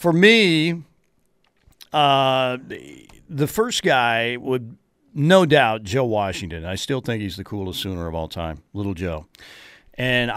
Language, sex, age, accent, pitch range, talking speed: English, male, 50-69, American, 105-145 Hz, 145 wpm